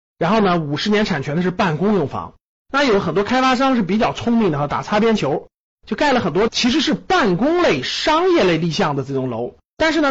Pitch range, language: 165-255 Hz, Chinese